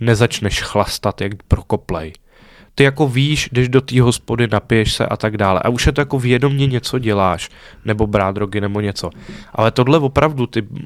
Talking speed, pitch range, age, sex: 180 wpm, 105-125 Hz, 10-29, male